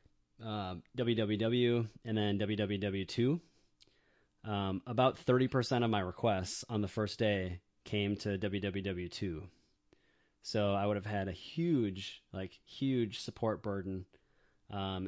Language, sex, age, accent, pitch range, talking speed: English, male, 20-39, American, 95-115 Hz, 125 wpm